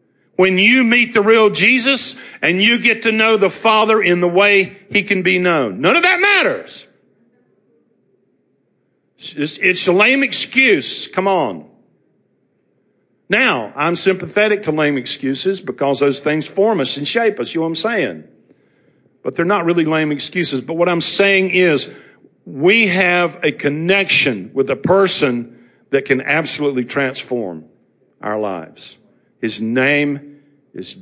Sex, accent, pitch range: male, American, 125-190 Hz